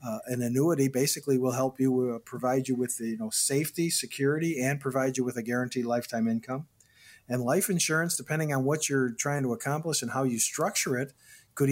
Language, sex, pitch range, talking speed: English, male, 120-145 Hz, 195 wpm